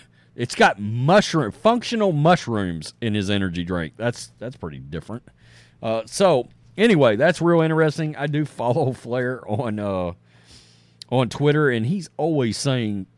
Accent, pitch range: American, 110-160 Hz